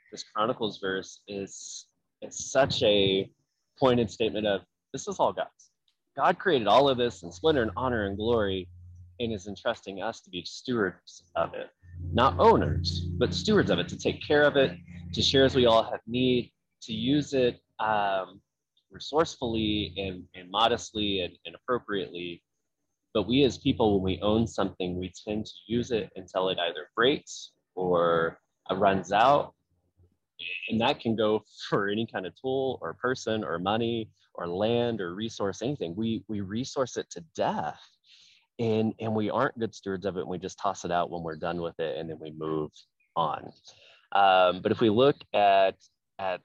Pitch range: 90-115 Hz